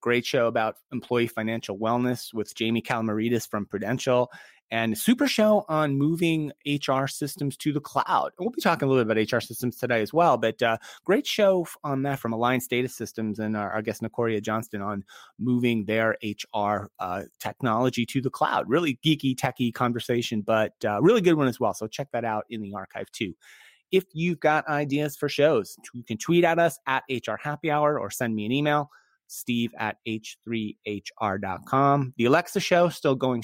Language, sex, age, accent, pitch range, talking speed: English, male, 30-49, American, 115-150 Hz, 190 wpm